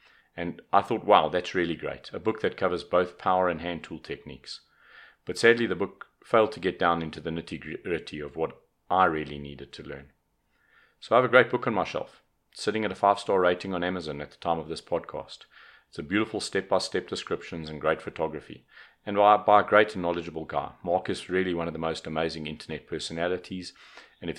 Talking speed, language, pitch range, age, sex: 210 wpm, English, 80-90 Hz, 40-59, male